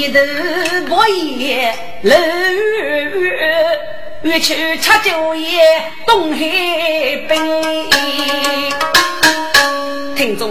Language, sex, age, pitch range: Chinese, female, 40-59, 245-350 Hz